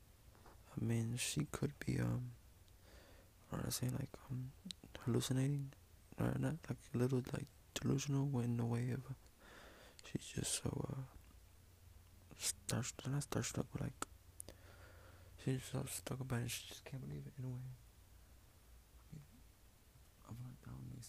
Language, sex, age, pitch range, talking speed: English, male, 20-39, 90-135 Hz, 155 wpm